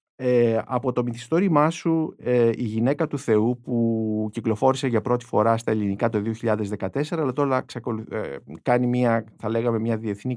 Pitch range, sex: 105-145 Hz, male